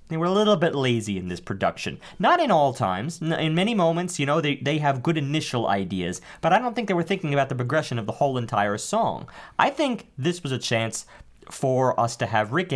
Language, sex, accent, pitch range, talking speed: English, male, American, 125-170 Hz, 235 wpm